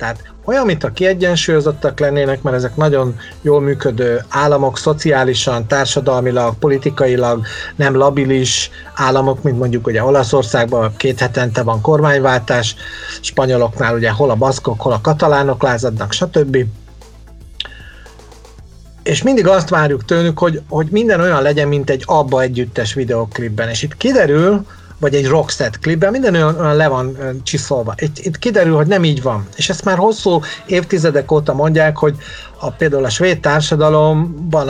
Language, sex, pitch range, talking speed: Hungarian, male, 125-155 Hz, 140 wpm